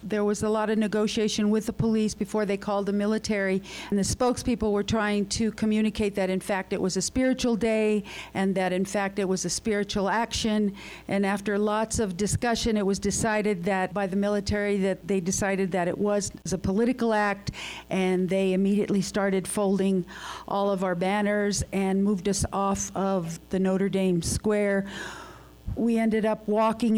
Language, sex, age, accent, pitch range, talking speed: English, female, 50-69, American, 195-225 Hz, 180 wpm